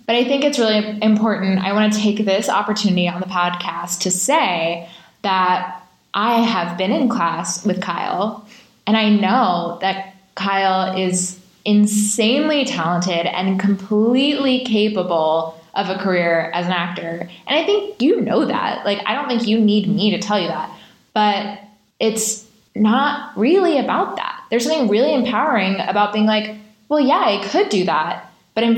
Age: 20-39